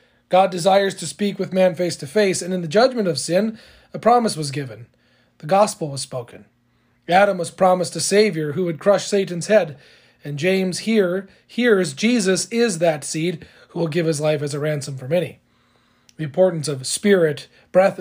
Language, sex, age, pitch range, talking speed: English, male, 40-59, 150-190 Hz, 185 wpm